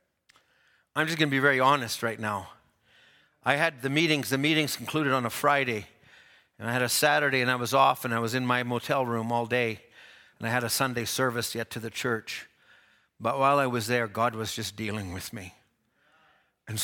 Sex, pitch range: male, 115-180 Hz